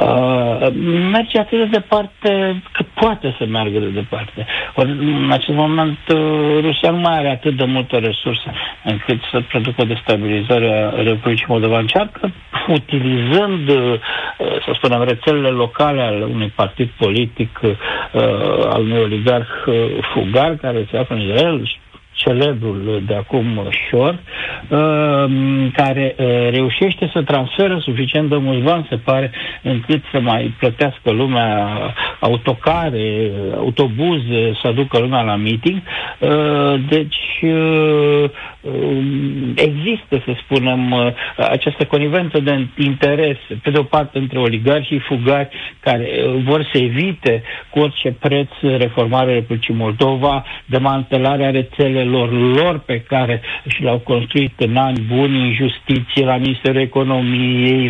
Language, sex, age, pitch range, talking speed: Romanian, male, 60-79, 120-150 Hz, 125 wpm